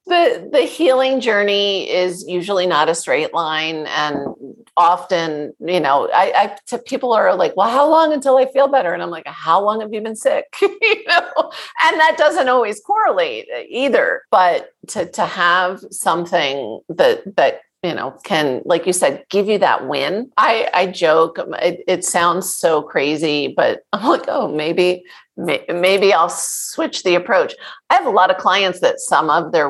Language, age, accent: English, 40-59, American